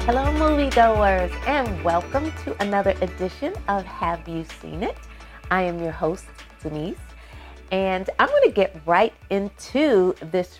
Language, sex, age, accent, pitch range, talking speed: English, female, 30-49, American, 160-215 Hz, 135 wpm